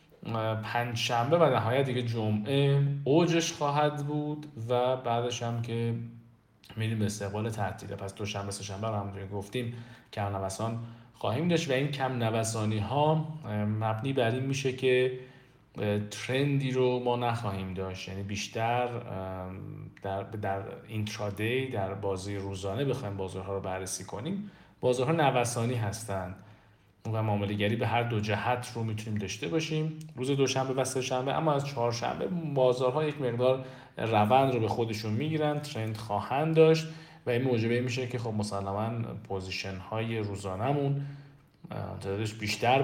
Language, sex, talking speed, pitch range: Persian, male, 145 wpm, 105-130 Hz